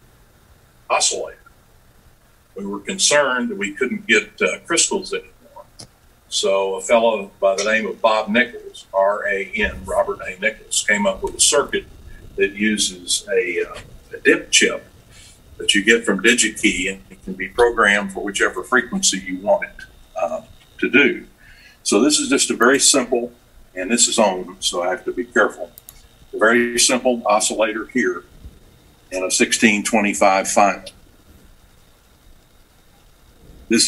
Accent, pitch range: American, 95-120 Hz